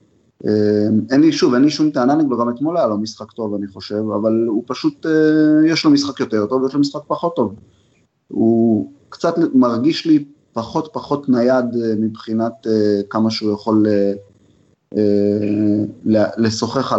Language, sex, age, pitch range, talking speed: Hebrew, male, 30-49, 105-130 Hz, 165 wpm